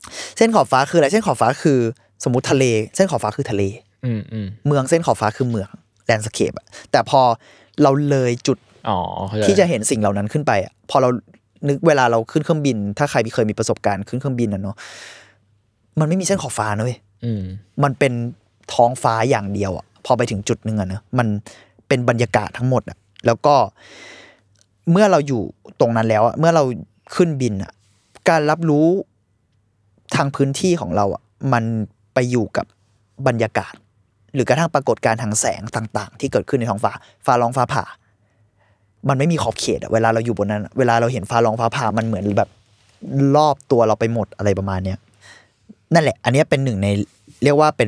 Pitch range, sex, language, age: 105-140 Hz, male, Thai, 20-39